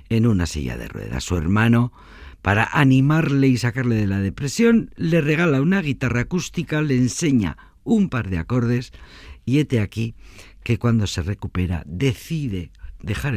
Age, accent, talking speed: 50-69, Spanish, 155 wpm